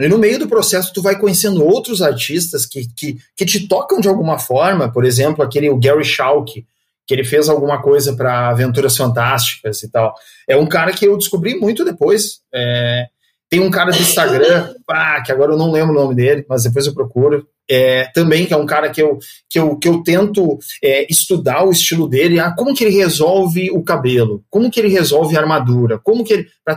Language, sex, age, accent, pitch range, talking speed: Portuguese, male, 30-49, Brazilian, 140-205 Hz, 190 wpm